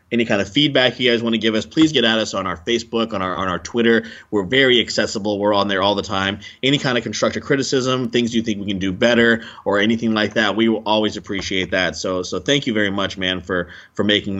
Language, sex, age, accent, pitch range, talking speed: English, male, 20-39, American, 95-115 Hz, 260 wpm